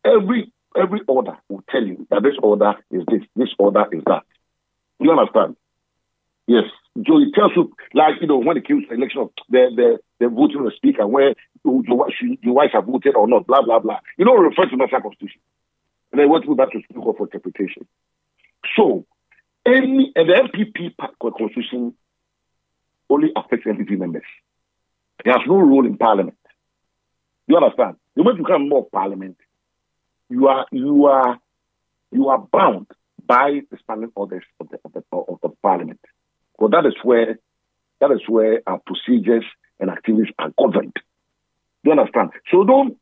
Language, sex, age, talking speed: English, male, 50-69, 175 wpm